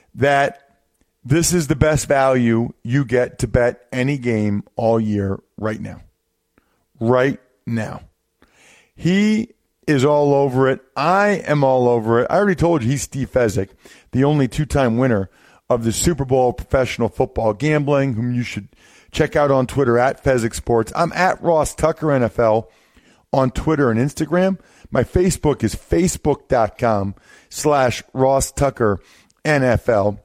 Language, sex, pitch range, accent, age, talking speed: English, male, 110-140 Hz, American, 40-59, 145 wpm